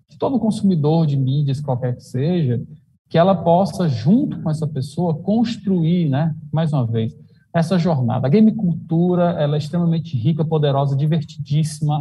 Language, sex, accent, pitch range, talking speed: English, male, Brazilian, 145-190 Hz, 145 wpm